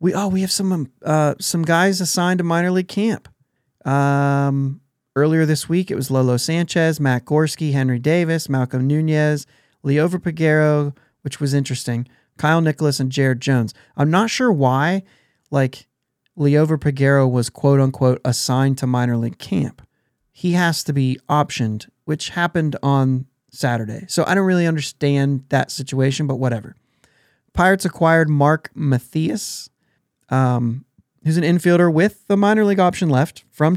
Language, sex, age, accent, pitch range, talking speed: English, male, 30-49, American, 130-160 Hz, 150 wpm